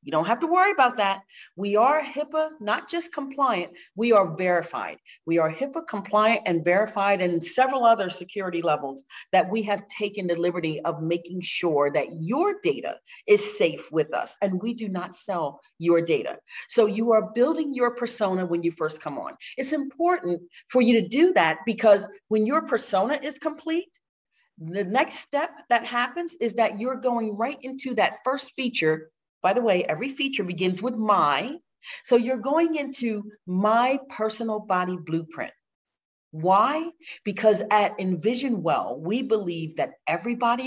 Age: 40-59